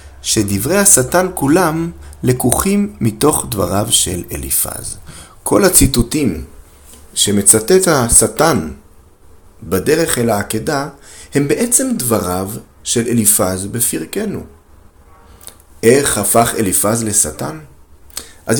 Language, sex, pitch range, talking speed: Hebrew, male, 85-120 Hz, 85 wpm